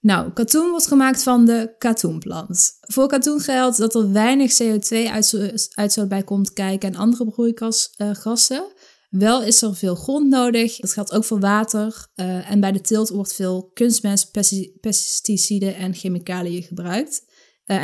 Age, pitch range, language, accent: 20-39, 190-235 Hz, Dutch, Dutch